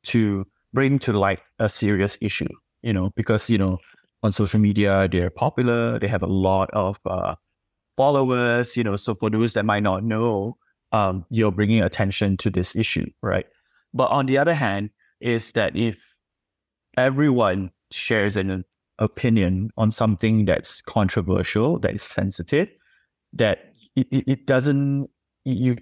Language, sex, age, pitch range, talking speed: English, male, 30-49, 95-120 Hz, 155 wpm